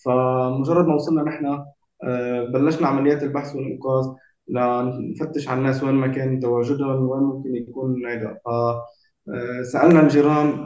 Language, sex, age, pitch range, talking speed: Turkish, male, 20-39, 125-150 Hz, 120 wpm